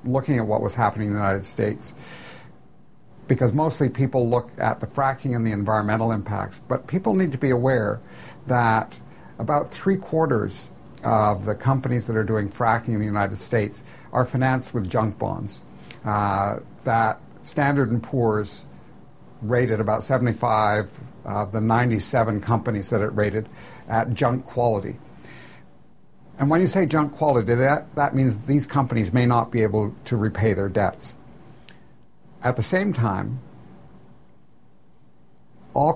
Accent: American